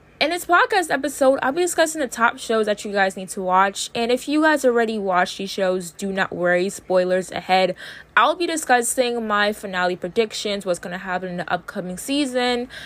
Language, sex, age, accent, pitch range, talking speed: English, female, 10-29, American, 185-240 Hz, 200 wpm